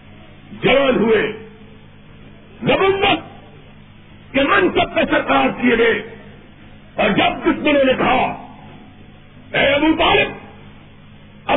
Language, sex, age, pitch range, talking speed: Urdu, male, 50-69, 245-295 Hz, 85 wpm